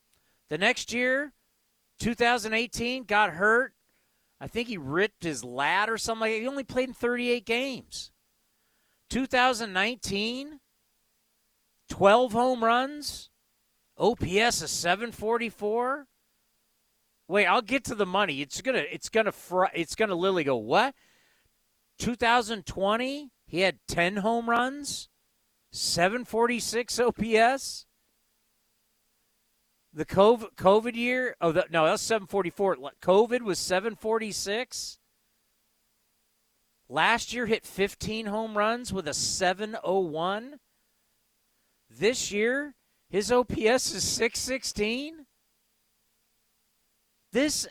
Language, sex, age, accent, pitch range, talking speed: English, male, 40-59, American, 195-245 Hz, 100 wpm